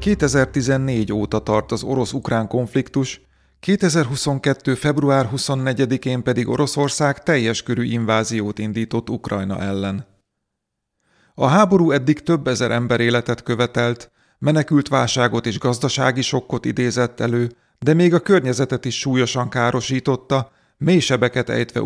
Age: 30-49